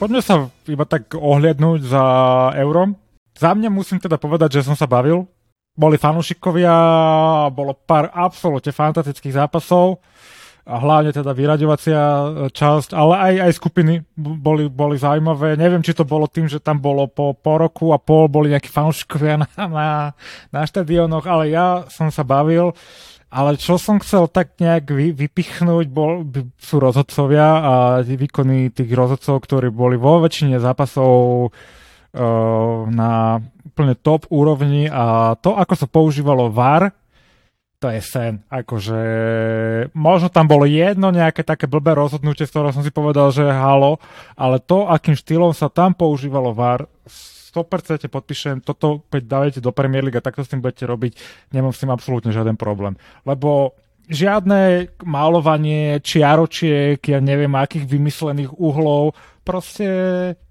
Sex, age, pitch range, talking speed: male, 20-39, 135-165 Hz, 145 wpm